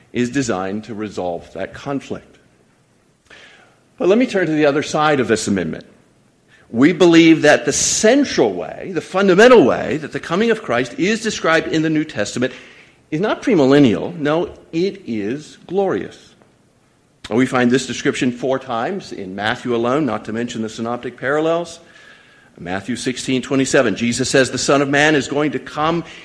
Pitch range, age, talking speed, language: 120-170 Hz, 50-69, 165 wpm, English